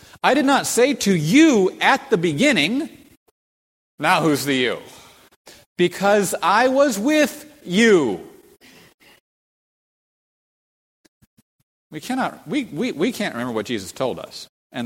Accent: American